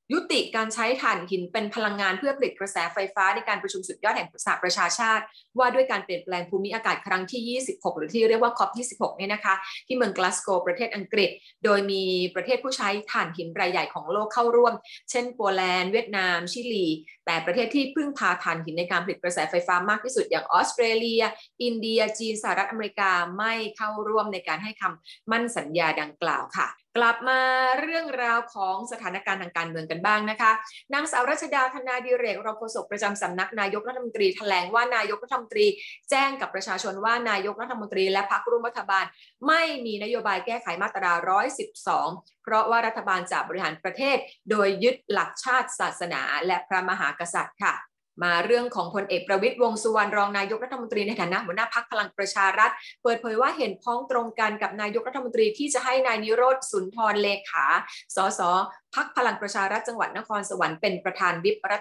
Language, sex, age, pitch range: Thai, female, 20-39, 190-240 Hz